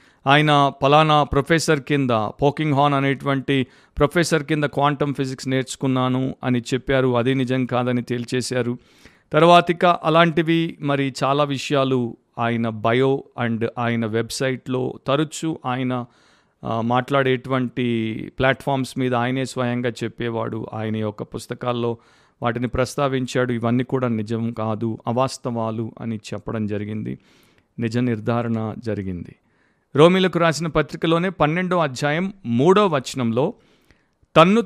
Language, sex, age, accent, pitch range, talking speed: Telugu, male, 50-69, native, 120-155 Hz, 100 wpm